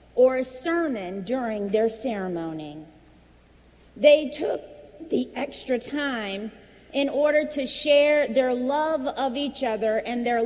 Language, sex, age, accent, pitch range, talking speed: English, female, 40-59, American, 220-285 Hz, 125 wpm